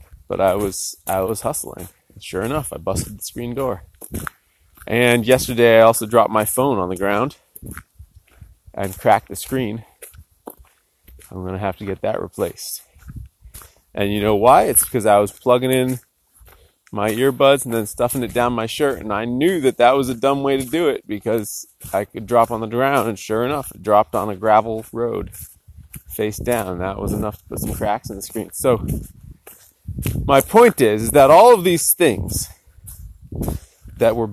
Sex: male